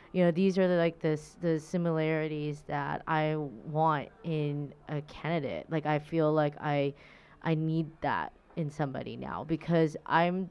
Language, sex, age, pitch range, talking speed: English, female, 20-39, 150-200 Hz, 155 wpm